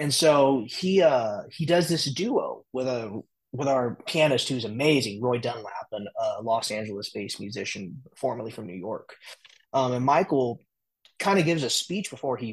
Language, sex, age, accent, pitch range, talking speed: English, male, 20-39, American, 120-145 Hz, 170 wpm